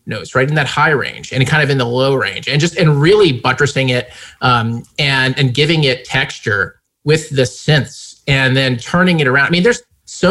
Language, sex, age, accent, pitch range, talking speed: English, male, 30-49, American, 125-155 Hz, 215 wpm